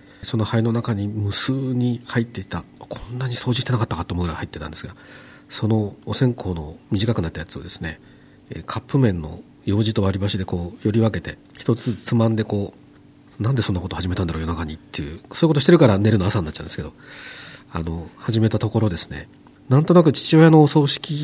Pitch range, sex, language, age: 95-140 Hz, male, Japanese, 40-59